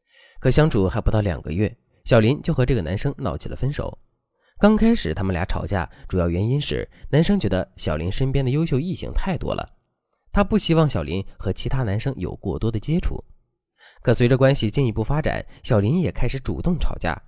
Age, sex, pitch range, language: 20-39, male, 95-145 Hz, Chinese